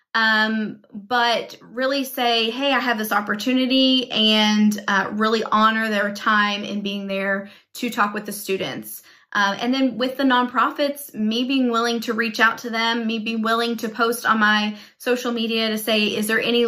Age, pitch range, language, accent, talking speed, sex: 20-39, 215-265 Hz, English, American, 185 wpm, female